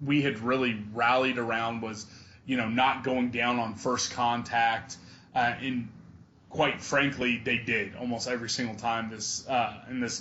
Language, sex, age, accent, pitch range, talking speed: English, male, 20-39, American, 115-130 Hz, 165 wpm